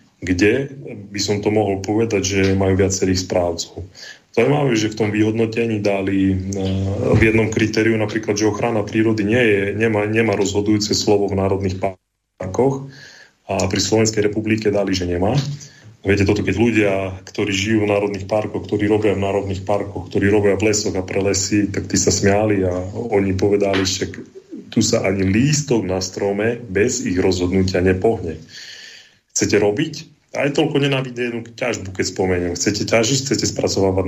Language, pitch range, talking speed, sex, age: Slovak, 95-110 Hz, 165 wpm, male, 20-39